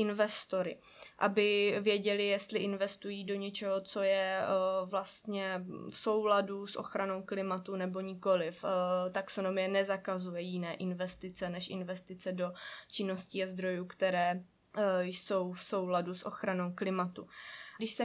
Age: 20-39